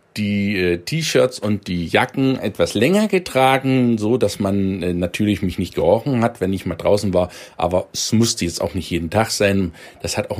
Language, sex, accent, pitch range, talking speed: German, male, German, 95-135 Hz, 190 wpm